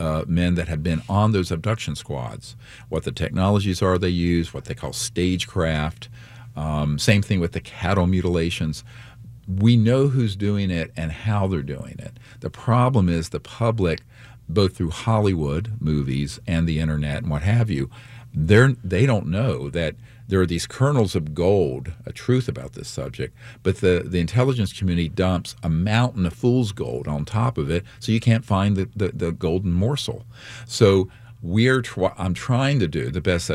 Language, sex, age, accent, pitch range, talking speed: English, male, 50-69, American, 85-115 Hz, 180 wpm